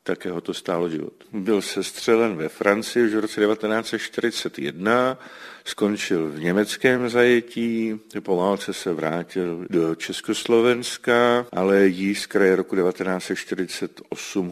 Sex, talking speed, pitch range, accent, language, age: male, 115 wpm, 85-110 Hz, native, Czech, 50-69